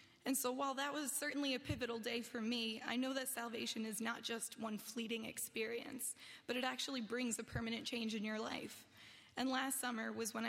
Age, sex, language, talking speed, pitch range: 20-39, female, English, 205 wpm, 230-255 Hz